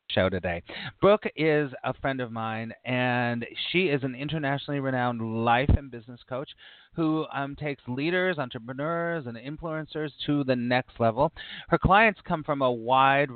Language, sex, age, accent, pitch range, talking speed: English, male, 40-59, American, 115-150 Hz, 155 wpm